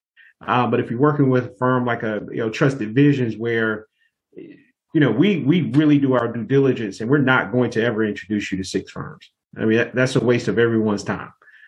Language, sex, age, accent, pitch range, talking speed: English, male, 30-49, American, 105-135 Hz, 210 wpm